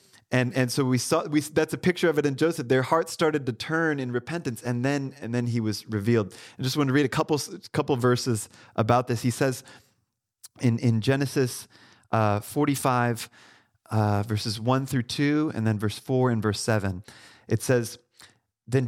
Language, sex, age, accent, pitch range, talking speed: English, male, 30-49, American, 110-140 Hz, 190 wpm